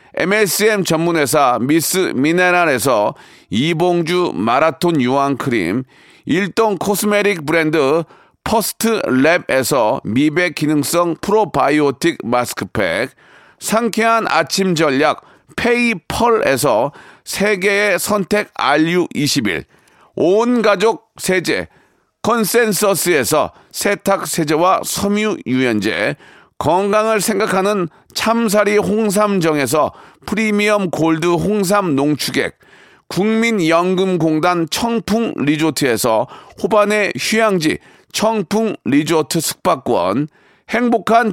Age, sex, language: 40-59, male, Korean